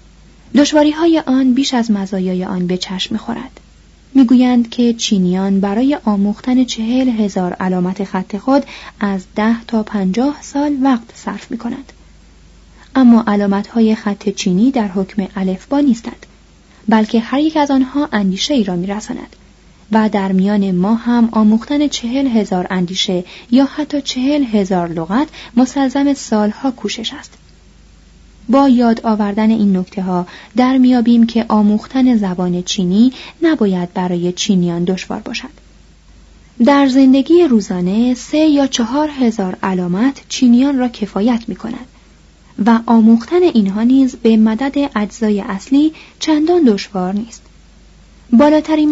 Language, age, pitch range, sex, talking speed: Persian, 30-49, 200-265 Hz, female, 130 wpm